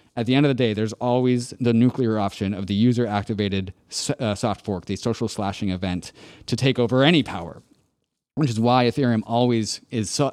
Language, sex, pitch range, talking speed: English, male, 105-130 Hz, 200 wpm